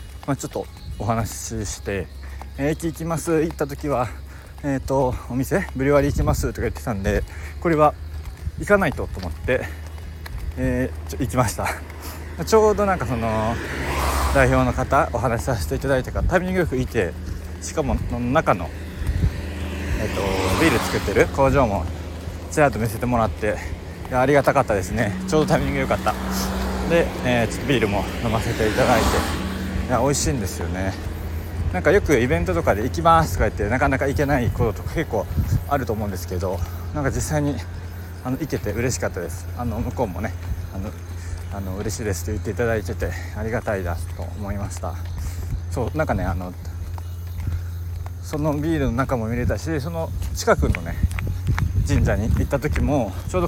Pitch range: 85-120 Hz